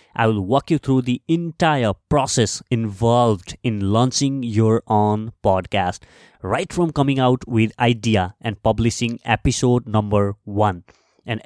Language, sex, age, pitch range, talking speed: English, male, 20-39, 105-140 Hz, 135 wpm